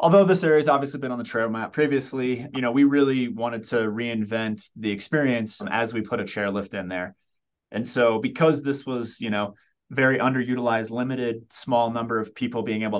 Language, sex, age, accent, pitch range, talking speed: English, male, 20-39, American, 105-130 Hz, 200 wpm